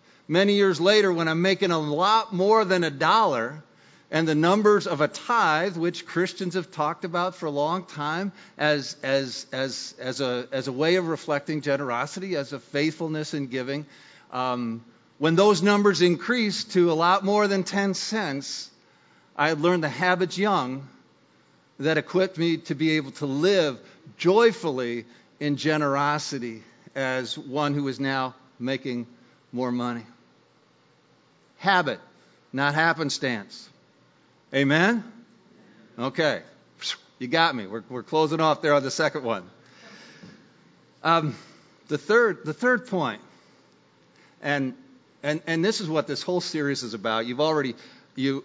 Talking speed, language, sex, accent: 140 wpm, English, male, American